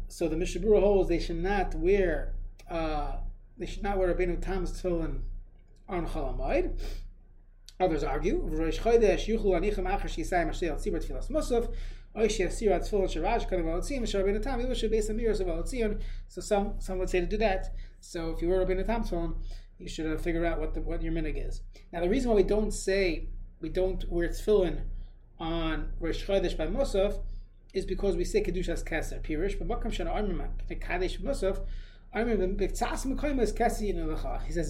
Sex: male